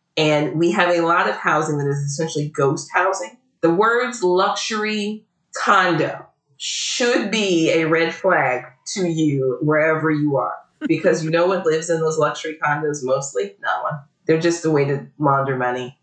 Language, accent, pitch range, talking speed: English, American, 145-190 Hz, 170 wpm